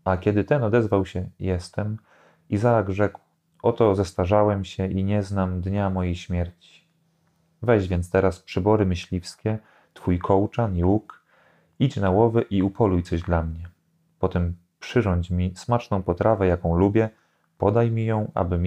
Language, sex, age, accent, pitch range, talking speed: Polish, male, 30-49, native, 90-110 Hz, 145 wpm